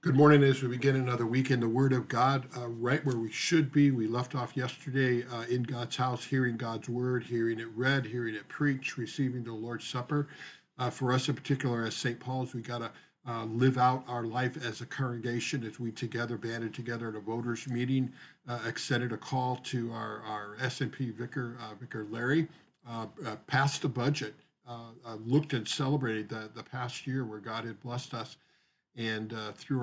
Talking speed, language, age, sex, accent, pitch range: 200 wpm, English, 50-69, male, American, 115-130 Hz